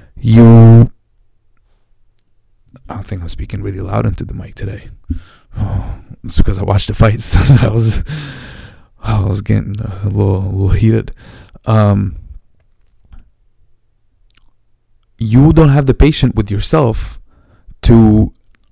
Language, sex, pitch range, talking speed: English, male, 95-115 Hz, 120 wpm